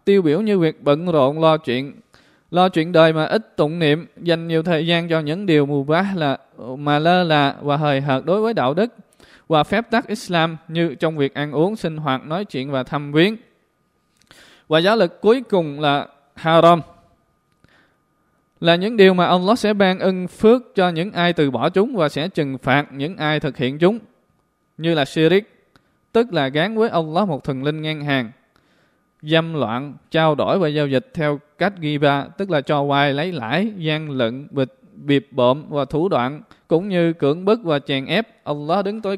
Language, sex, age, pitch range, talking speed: Vietnamese, male, 20-39, 150-195 Hz, 200 wpm